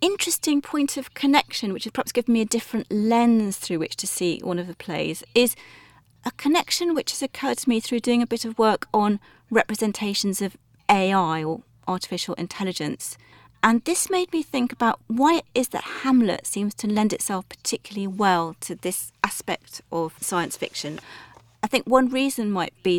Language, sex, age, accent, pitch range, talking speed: English, female, 40-59, British, 185-240 Hz, 185 wpm